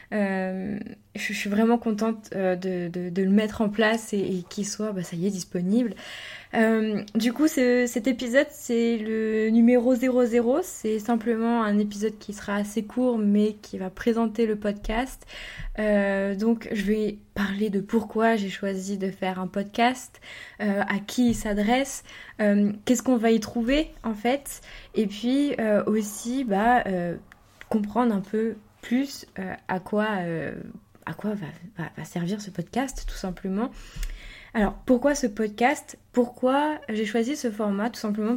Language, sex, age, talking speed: French, female, 20-39, 165 wpm